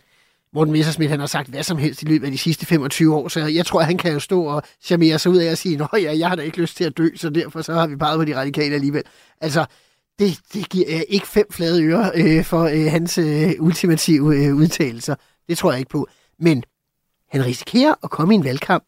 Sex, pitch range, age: male, 160-215 Hz, 30-49